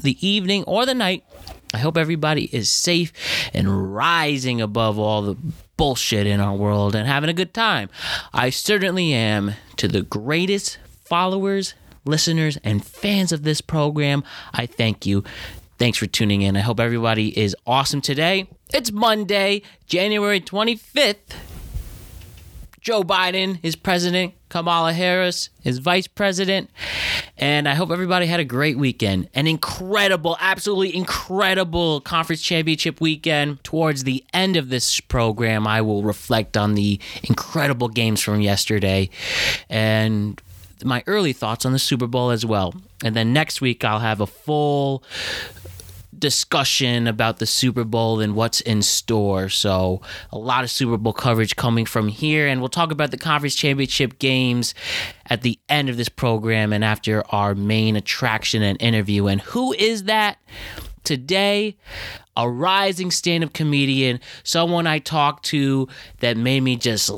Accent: American